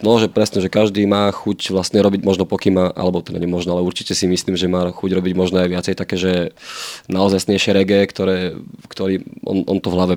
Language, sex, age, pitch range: Slovak, male, 20-39, 90-100 Hz